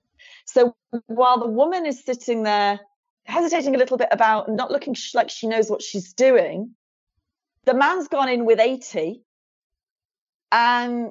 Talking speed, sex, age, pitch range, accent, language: 150 wpm, female, 30-49, 185-260 Hz, British, English